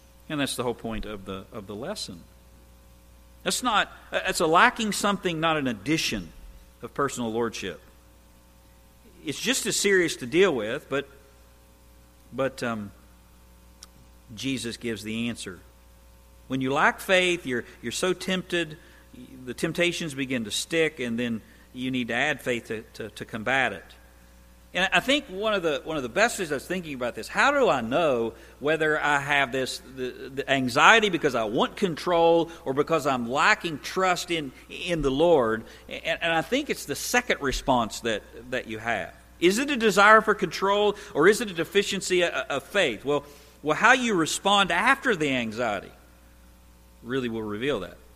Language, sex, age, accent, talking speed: English, male, 50-69, American, 170 wpm